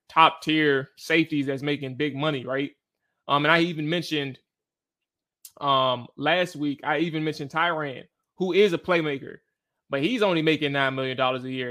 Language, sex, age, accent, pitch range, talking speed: English, male, 20-39, American, 145-170 Hz, 165 wpm